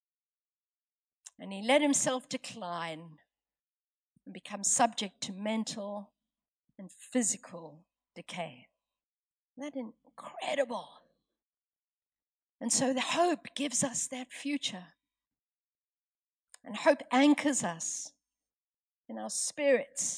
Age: 50-69